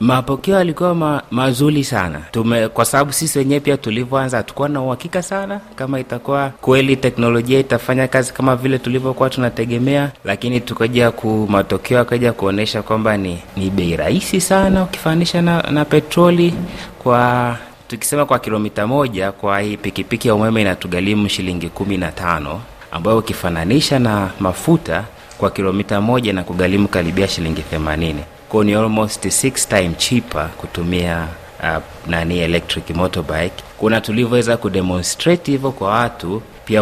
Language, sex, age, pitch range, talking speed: Swahili, male, 30-49, 90-125 Hz, 135 wpm